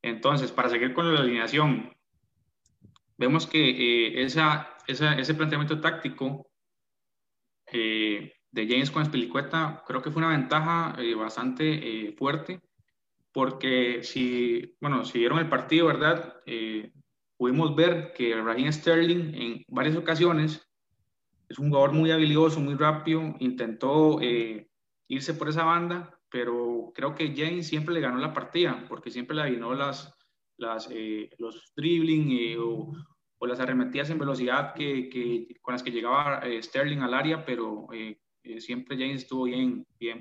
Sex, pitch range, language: male, 120-155 Hz, Spanish